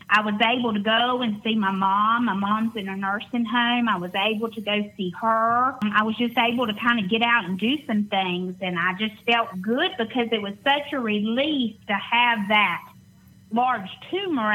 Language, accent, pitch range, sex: English, American, 200-245 Hz, female